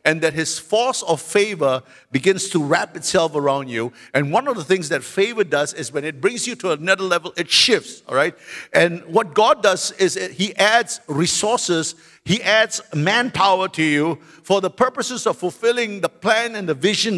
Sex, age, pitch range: male, 50-69, 160-215 Hz